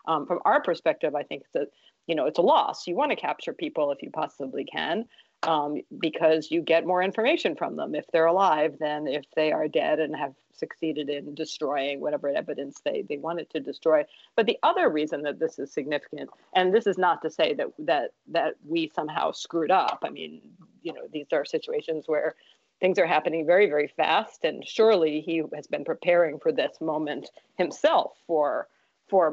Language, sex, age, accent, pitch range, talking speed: English, female, 40-59, American, 150-195 Hz, 195 wpm